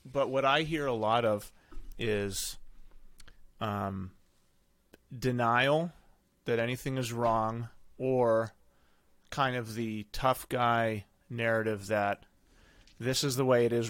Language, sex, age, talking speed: English, male, 30-49, 120 wpm